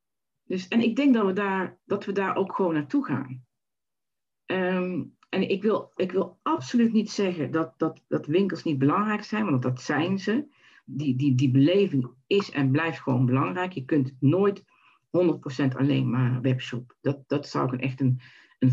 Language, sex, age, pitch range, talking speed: Dutch, female, 50-69, 130-165 Hz, 185 wpm